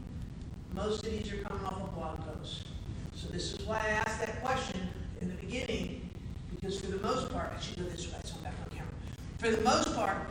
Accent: American